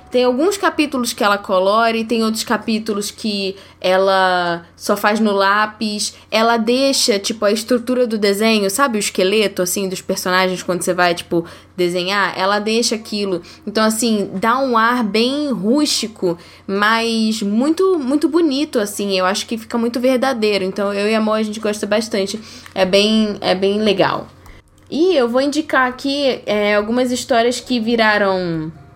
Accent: Brazilian